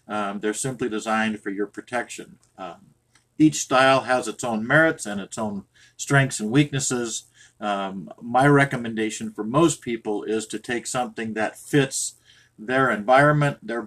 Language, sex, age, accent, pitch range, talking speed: English, male, 50-69, American, 110-135 Hz, 150 wpm